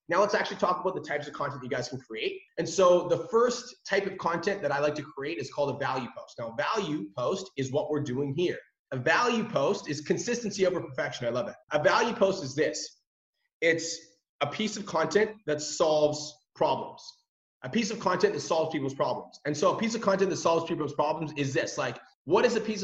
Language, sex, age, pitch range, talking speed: English, male, 30-49, 150-195 Hz, 230 wpm